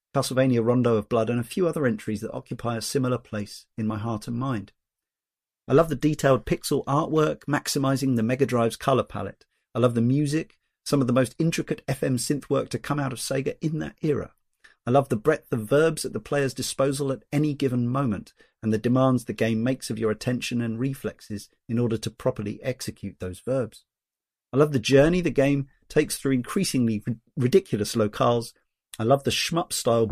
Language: English